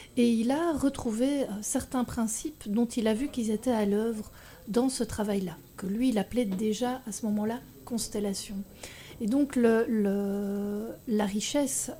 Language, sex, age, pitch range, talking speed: French, female, 40-59, 205-250 Hz, 150 wpm